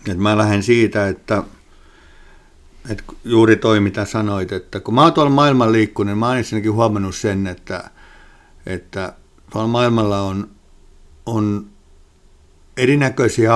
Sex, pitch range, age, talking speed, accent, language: male, 95-115 Hz, 60-79, 125 wpm, native, Finnish